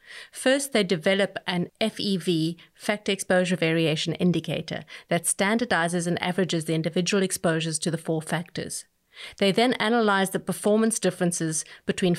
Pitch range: 170-200 Hz